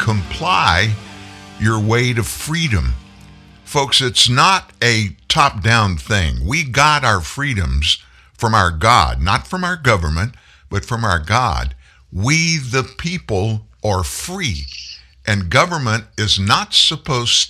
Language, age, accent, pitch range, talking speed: English, 60-79, American, 90-125 Hz, 125 wpm